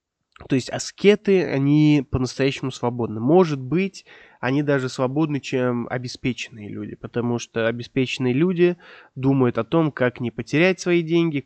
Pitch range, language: 120-175 Hz, Russian